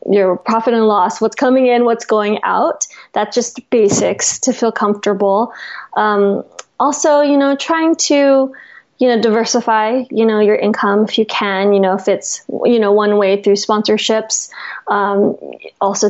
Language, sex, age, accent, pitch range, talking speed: English, female, 20-39, American, 210-255 Hz, 165 wpm